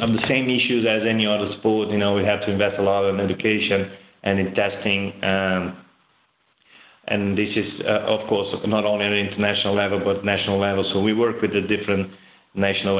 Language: English